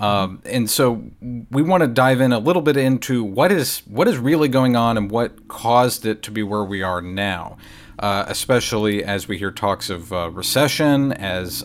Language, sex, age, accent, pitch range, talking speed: English, male, 40-59, American, 100-130 Hz, 200 wpm